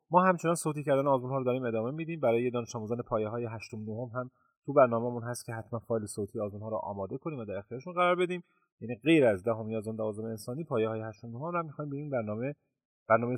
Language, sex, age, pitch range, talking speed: Persian, male, 30-49, 115-160 Hz, 230 wpm